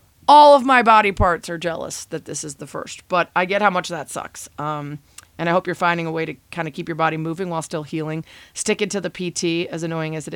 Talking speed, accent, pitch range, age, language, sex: 265 wpm, American, 165-200 Hz, 30-49, English, female